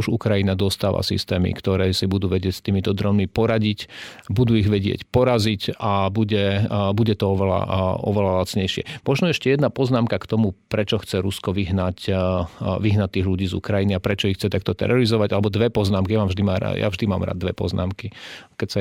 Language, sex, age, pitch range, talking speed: Slovak, male, 40-59, 100-115 Hz, 195 wpm